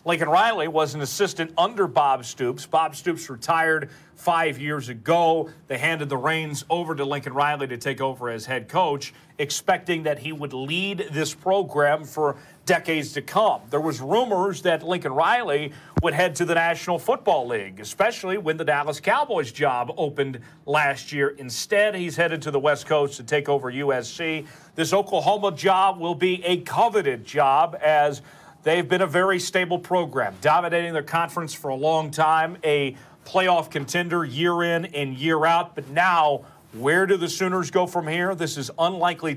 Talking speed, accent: 175 wpm, American